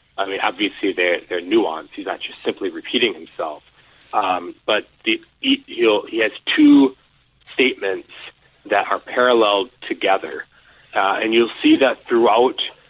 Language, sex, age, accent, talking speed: English, male, 30-49, American, 145 wpm